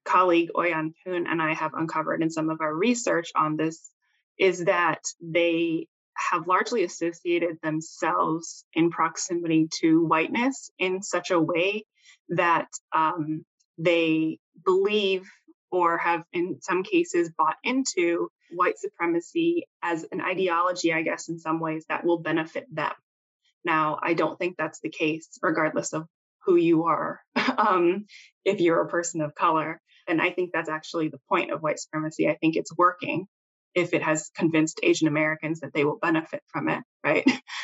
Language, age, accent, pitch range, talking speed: English, 20-39, American, 165-195 Hz, 160 wpm